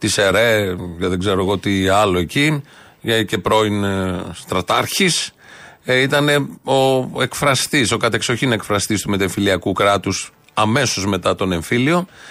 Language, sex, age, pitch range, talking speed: Greek, male, 40-59, 110-145 Hz, 120 wpm